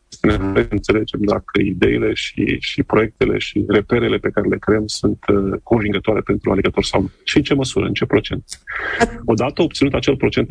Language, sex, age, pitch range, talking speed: Romanian, male, 30-49, 105-125 Hz, 175 wpm